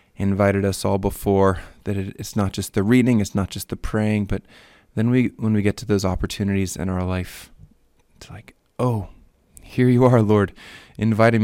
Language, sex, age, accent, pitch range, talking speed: English, male, 20-39, American, 95-110 Hz, 185 wpm